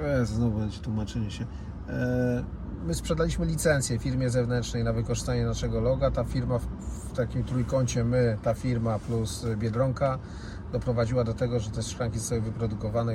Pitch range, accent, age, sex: 105-125 Hz, native, 30-49, male